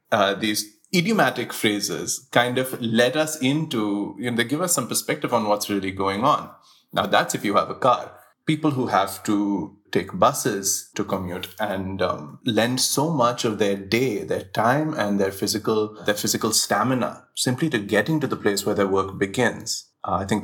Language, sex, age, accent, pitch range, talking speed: English, male, 30-49, Indian, 100-130 Hz, 190 wpm